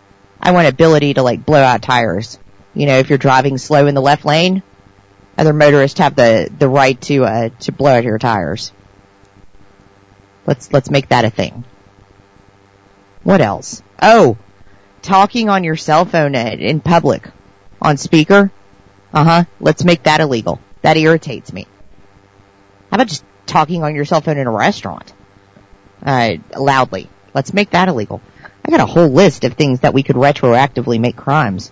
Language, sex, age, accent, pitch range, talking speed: English, female, 40-59, American, 100-155 Hz, 165 wpm